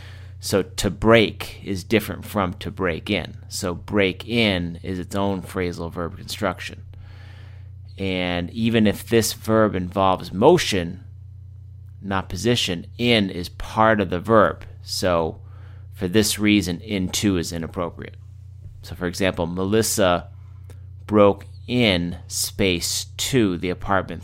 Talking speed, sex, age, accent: 125 wpm, male, 30-49, American